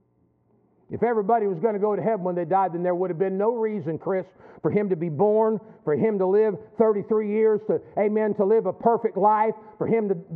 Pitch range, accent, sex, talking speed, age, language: 200-260 Hz, American, male, 230 wpm, 50-69, English